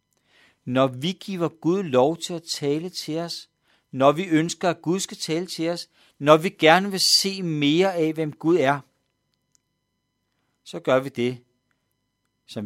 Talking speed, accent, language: 160 wpm, native, Danish